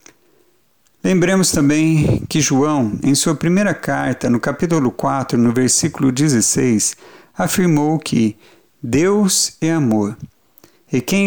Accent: Brazilian